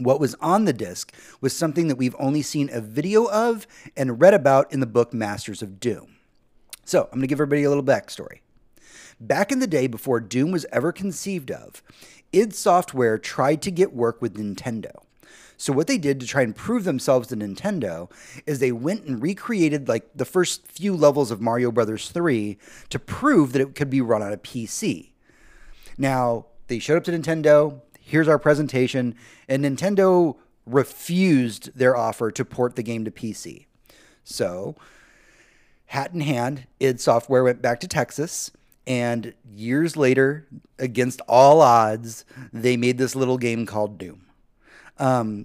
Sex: male